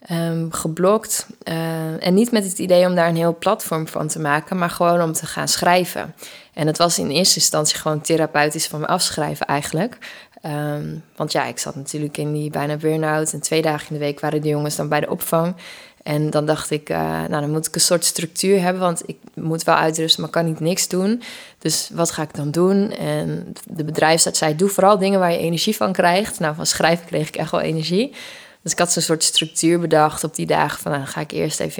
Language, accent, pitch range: Dutch, Dutch, 150-175 Hz